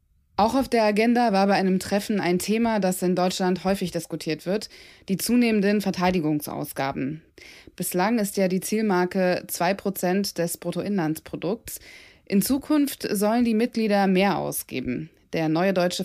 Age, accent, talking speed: 20-39, German, 140 wpm